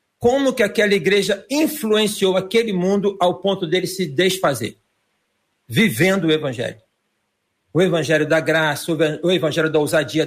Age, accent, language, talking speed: 50-69, Brazilian, Portuguese, 135 wpm